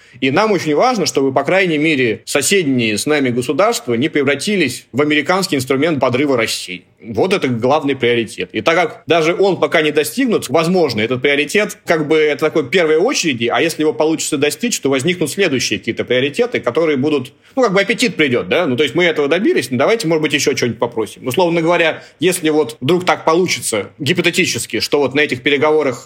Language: Russian